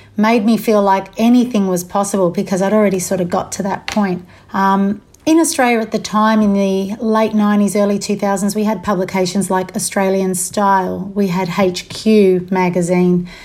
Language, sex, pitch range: English, female, 190-225 Hz